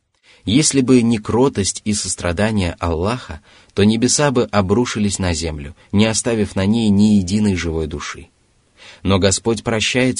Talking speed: 140 wpm